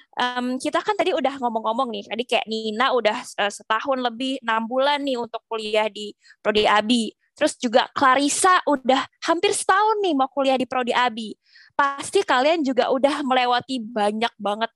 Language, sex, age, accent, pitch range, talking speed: Indonesian, female, 20-39, native, 225-280 Hz, 165 wpm